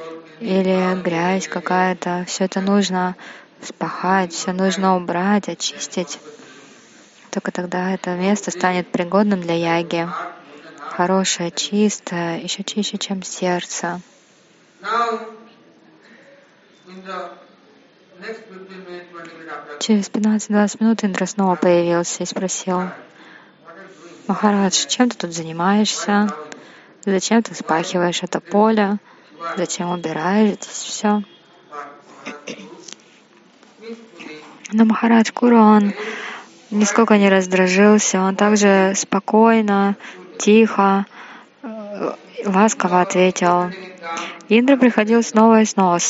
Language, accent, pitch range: Russian, native, 180-210 Hz